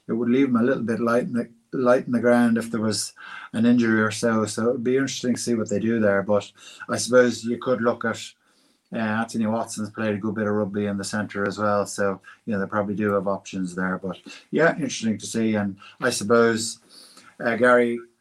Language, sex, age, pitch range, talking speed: English, male, 20-39, 100-115 Hz, 235 wpm